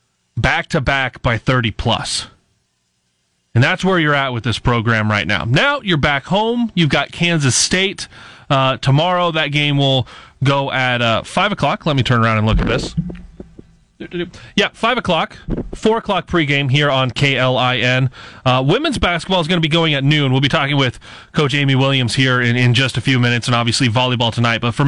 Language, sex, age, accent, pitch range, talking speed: English, male, 30-49, American, 125-160 Hz, 190 wpm